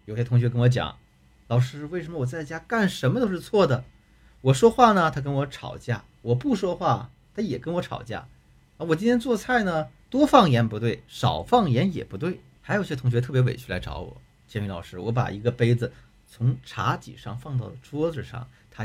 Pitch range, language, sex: 115-165 Hz, Chinese, male